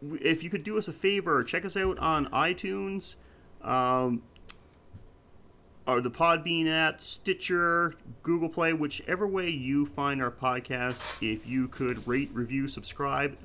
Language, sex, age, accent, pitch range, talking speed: English, male, 30-49, American, 125-160 Hz, 145 wpm